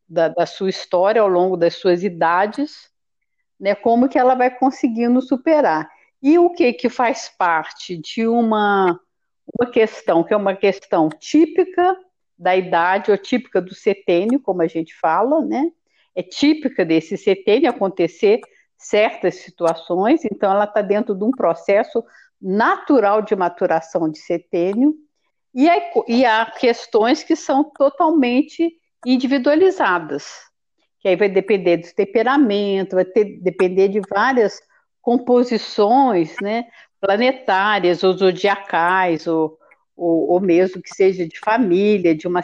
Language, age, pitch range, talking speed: Portuguese, 50-69, 180-255 Hz, 135 wpm